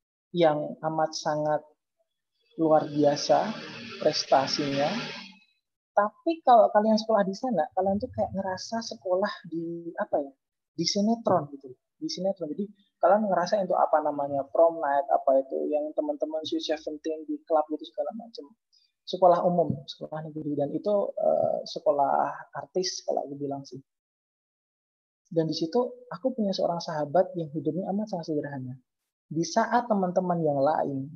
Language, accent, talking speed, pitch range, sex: Indonesian, native, 140 wpm, 150-200 Hz, male